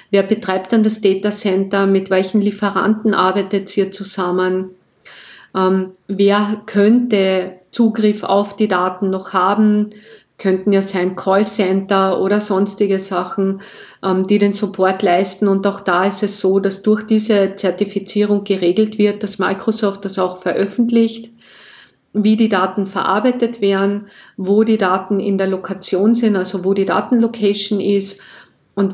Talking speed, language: 145 wpm, German